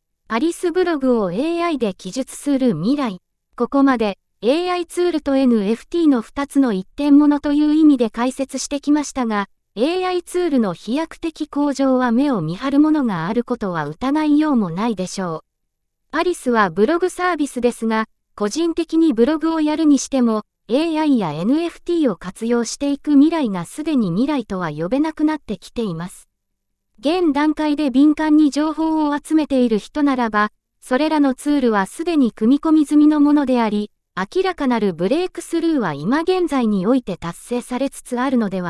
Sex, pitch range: female, 225-305 Hz